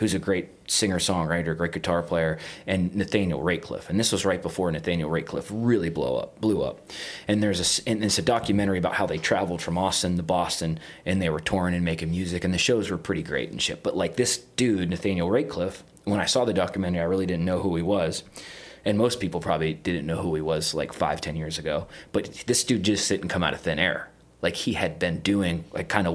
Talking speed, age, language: 235 wpm, 30-49, English